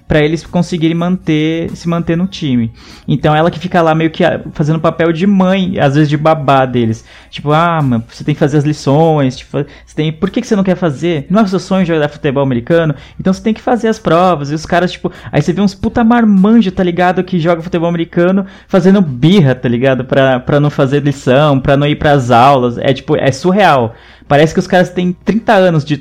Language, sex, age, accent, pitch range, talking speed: Portuguese, male, 20-39, Brazilian, 135-175 Hz, 230 wpm